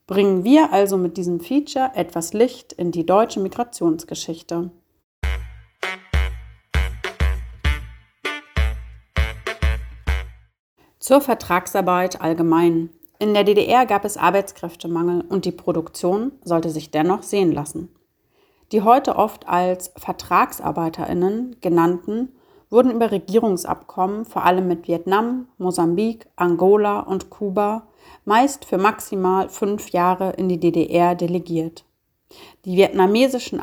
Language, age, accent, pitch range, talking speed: German, 40-59, German, 170-215 Hz, 100 wpm